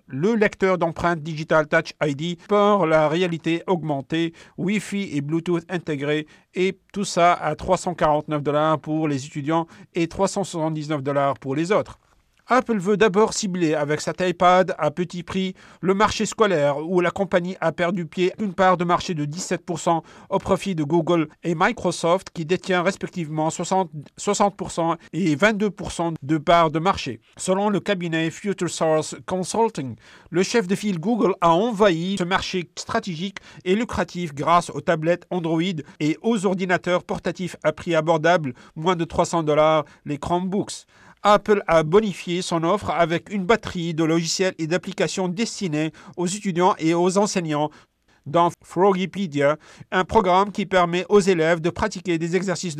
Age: 50-69